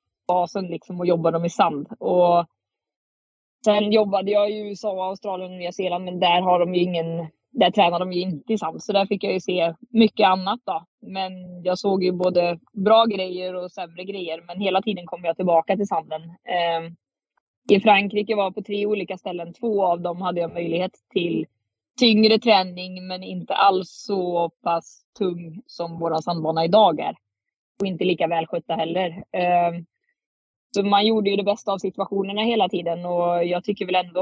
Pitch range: 170-200 Hz